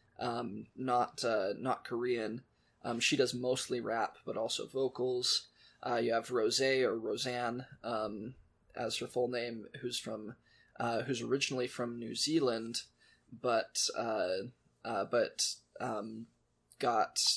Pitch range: 115-130 Hz